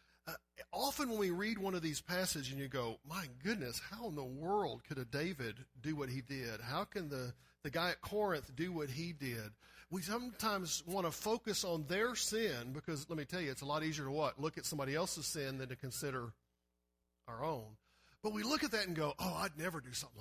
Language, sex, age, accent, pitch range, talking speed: English, male, 50-69, American, 125-175 Hz, 230 wpm